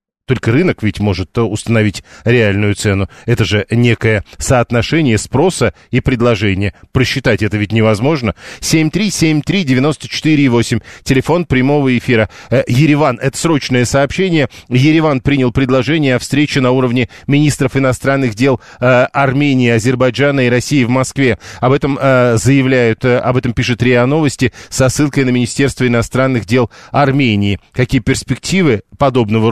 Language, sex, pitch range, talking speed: Russian, male, 120-140 Hz, 125 wpm